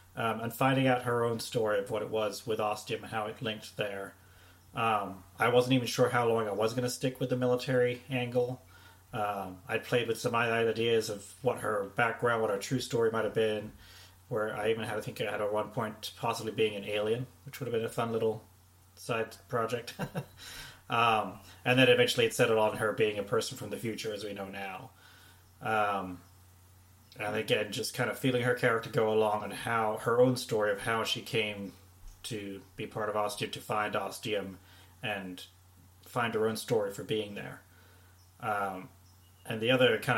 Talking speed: 200 wpm